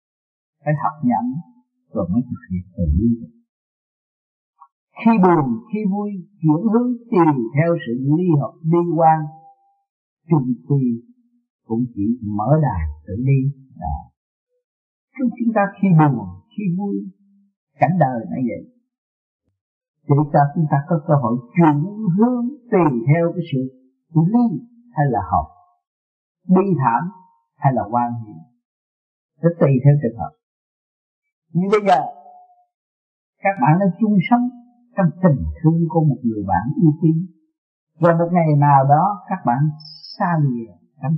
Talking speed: 140 wpm